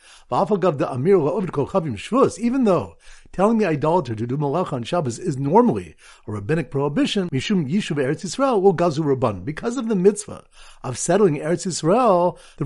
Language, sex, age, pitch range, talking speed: English, male, 50-69, 135-205 Hz, 115 wpm